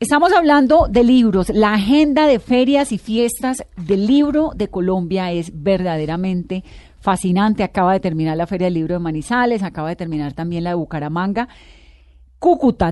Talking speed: 160 wpm